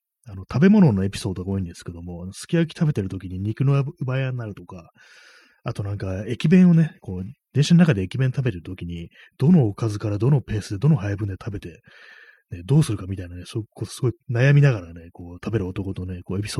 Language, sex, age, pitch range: Japanese, male, 30-49, 95-140 Hz